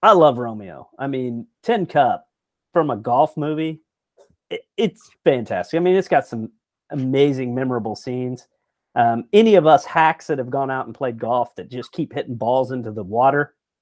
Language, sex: English, male